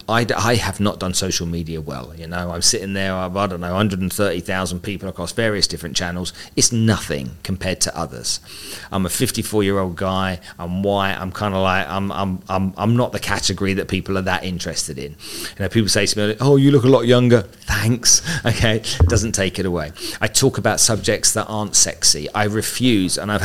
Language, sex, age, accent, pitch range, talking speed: English, male, 40-59, British, 95-110 Hz, 215 wpm